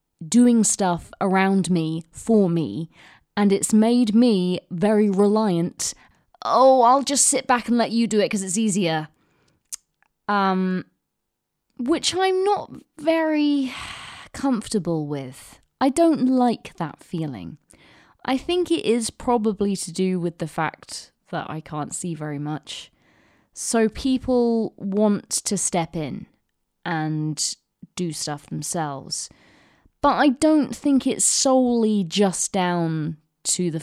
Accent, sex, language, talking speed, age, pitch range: British, female, English, 130 wpm, 20-39, 160-230 Hz